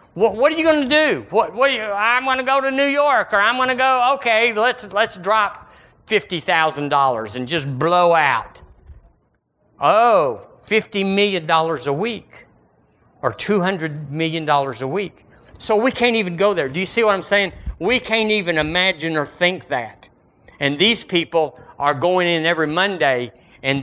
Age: 50-69